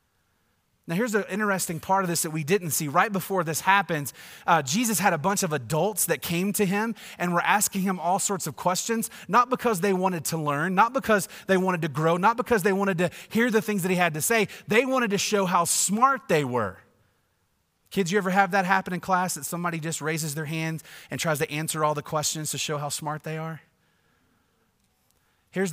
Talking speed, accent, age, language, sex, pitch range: 220 wpm, American, 30-49, English, male, 120-195 Hz